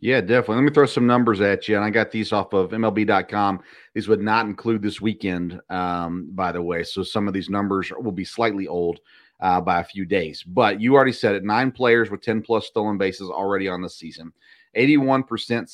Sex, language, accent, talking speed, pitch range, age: male, English, American, 215 wpm, 100-125 Hz, 40-59